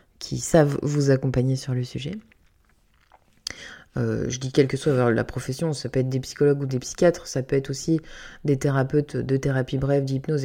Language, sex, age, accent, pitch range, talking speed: French, female, 20-39, French, 130-160 Hz, 190 wpm